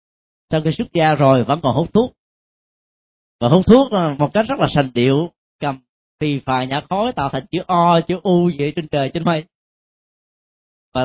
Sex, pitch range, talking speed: male, 140-205 Hz, 195 wpm